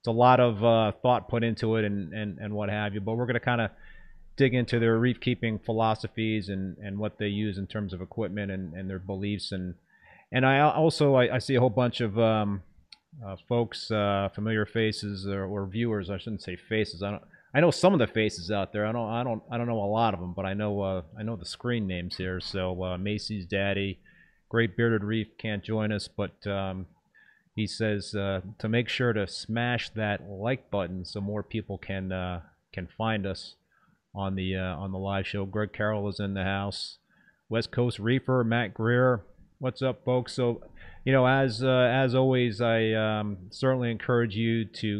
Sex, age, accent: male, 30-49, American